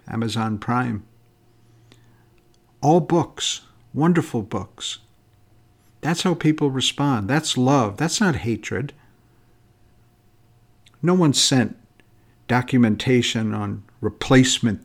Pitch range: 115-130 Hz